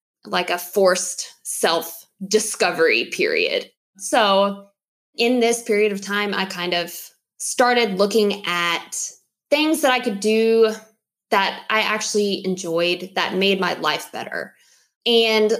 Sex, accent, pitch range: female, American, 180-220 Hz